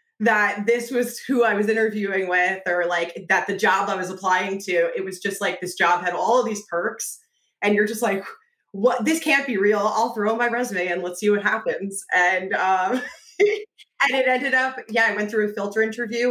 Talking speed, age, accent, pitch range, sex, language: 215 wpm, 20-39, American, 180-225 Hz, female, English